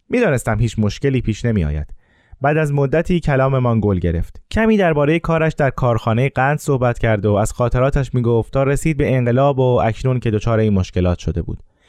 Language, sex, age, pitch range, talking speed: Persian, male, 20-39, 110-160 Hz, 170 wpm